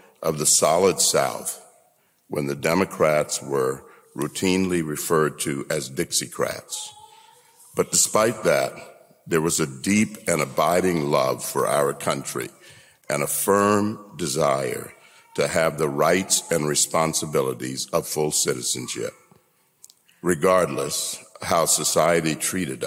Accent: American